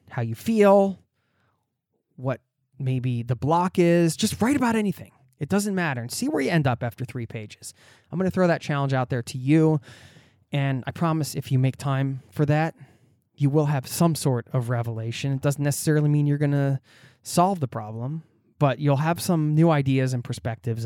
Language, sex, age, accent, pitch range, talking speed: English, male, 20-39, American, 115-150 Hz, 195 wpm